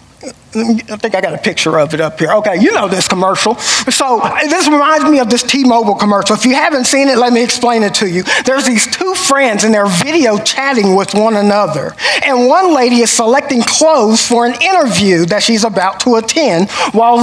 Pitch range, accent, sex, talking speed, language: 205-270 Hz, American, male, 210 wpm, English